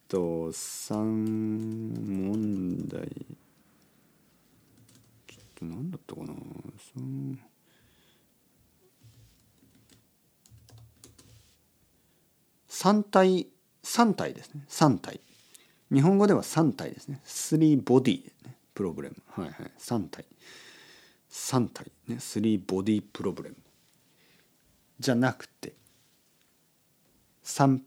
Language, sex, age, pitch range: Japanese, male, 50-69, 95-145 Hz